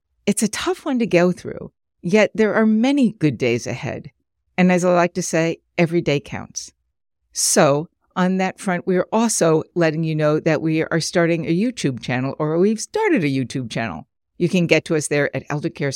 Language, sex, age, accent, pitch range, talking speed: English, female, 60-79, American, 145-195 Hz, 205 wpm